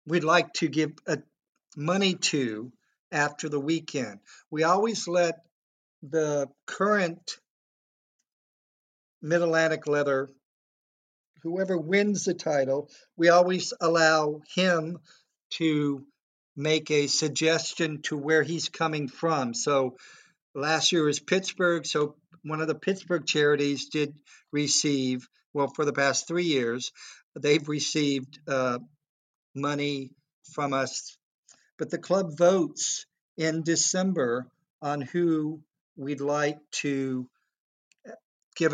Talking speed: 110 wpm